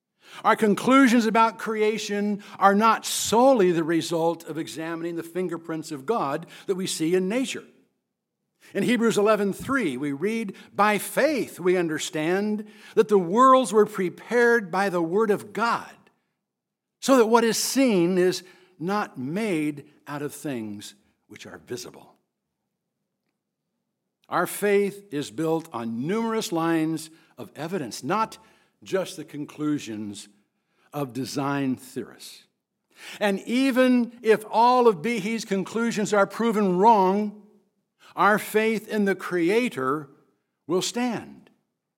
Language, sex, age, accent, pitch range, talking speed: English, male, 60-79, American, 170-230 Hz, 125 wpm